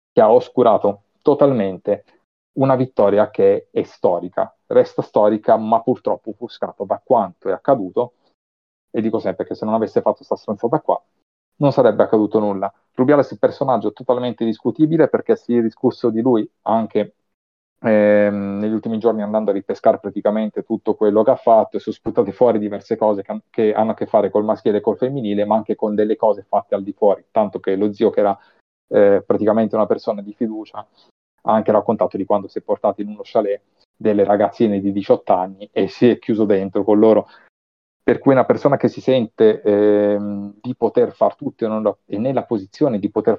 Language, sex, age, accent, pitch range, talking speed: Italian, male, 30-49, native, 100-115 Hz, 190 wpm